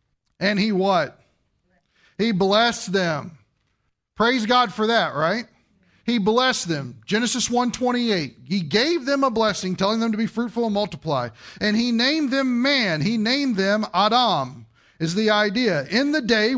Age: 40-59